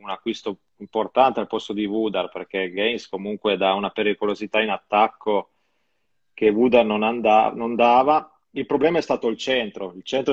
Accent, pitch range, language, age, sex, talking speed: native, 105-130 Hz, Italian, 30-49, male, 170 wpm